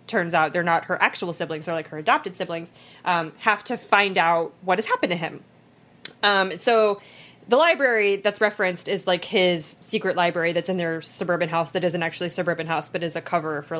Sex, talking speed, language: female, 215 wpm, English